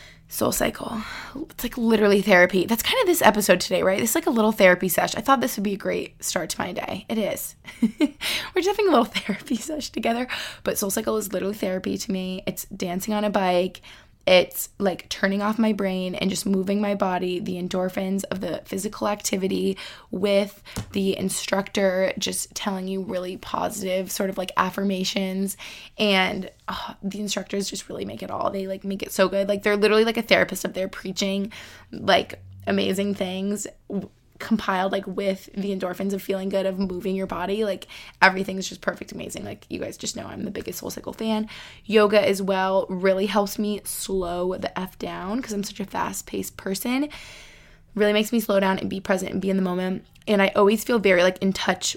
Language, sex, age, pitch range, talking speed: English, female, 20-39, 190-210 Hz, 200 wpm